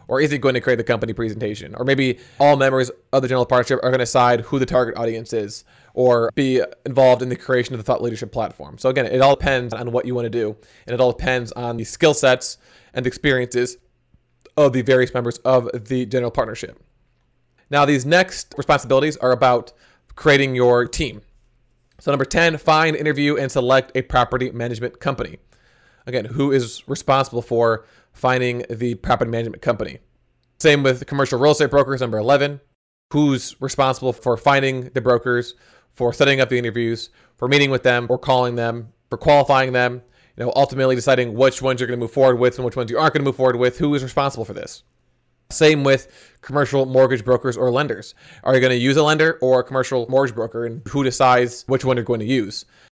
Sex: male